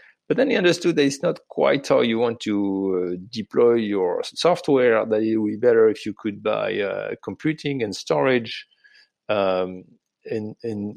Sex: male